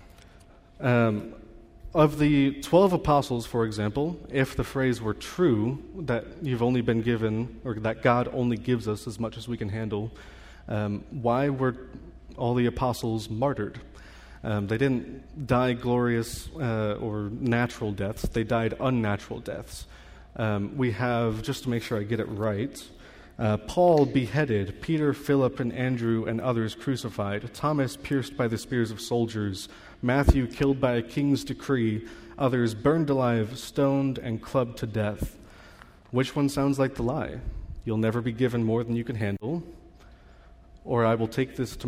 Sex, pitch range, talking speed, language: male, 105-130 Hz, 160 wpm, English